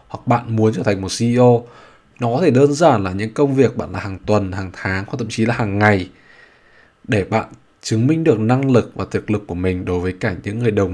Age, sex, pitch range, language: 20-39, male, 100-130 Hz, Vietnamese